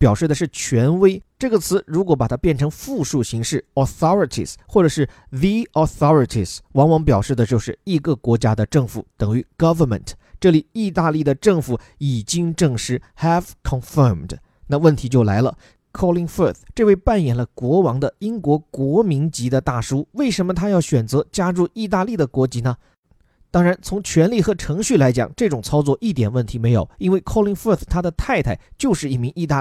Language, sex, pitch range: Chinese, male, 125-175 Hz